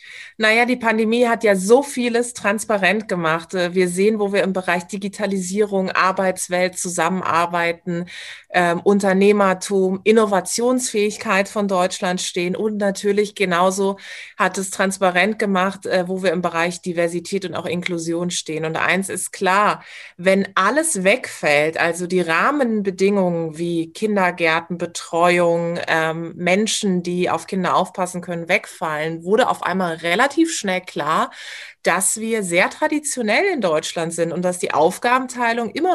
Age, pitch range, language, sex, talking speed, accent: 30-49, 175-205 Hz, German, female, 135 wpm, German